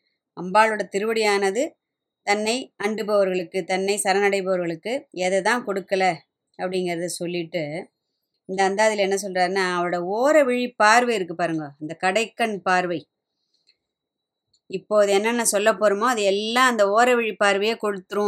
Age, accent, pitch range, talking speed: 20-39, native, 185-235 Hz, 110 wpm